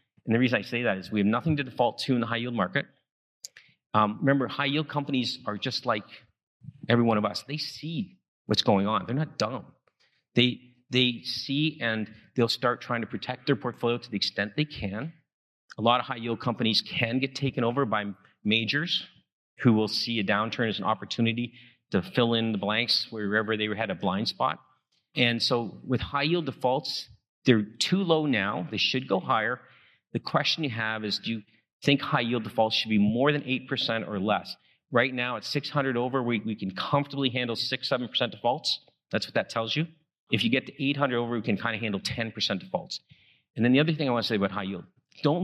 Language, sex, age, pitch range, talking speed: English, male, 40-59, 110-135 Hz, 210 wpm